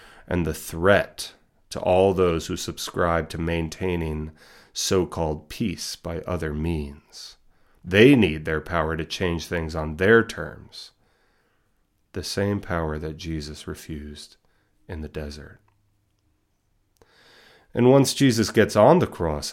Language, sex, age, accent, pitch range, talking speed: English, male, 30-49, American, 80-105 Hz, 125 wpm